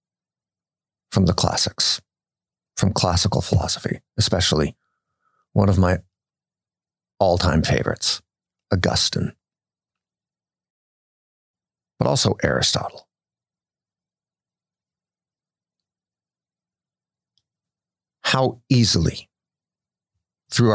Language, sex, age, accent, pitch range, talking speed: English, male, 50-69, American, 90-120 Hz, 55 wpm